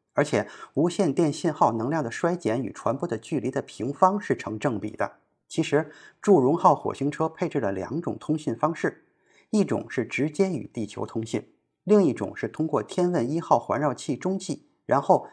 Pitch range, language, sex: 130-185 Hz, Chinese, male